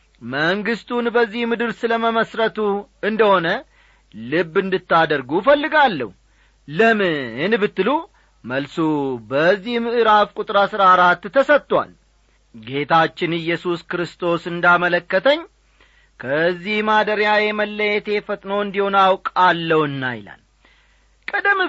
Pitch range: 170-215 Hz